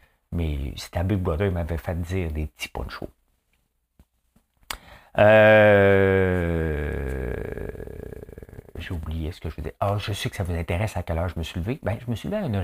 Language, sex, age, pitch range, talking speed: French, male, 60-79, 75-100 Hz, 185 wpm